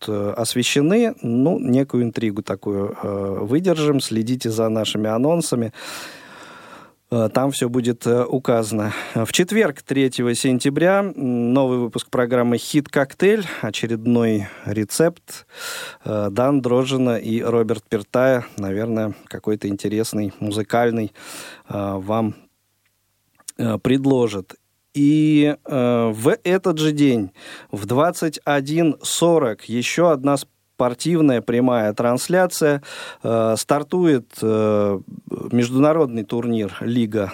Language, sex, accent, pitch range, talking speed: Russian, male, native, 110-145 Hz, 85 wpm